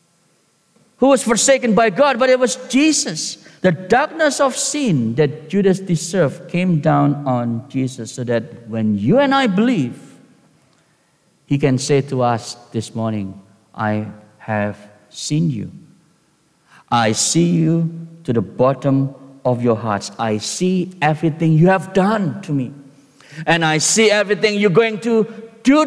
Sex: male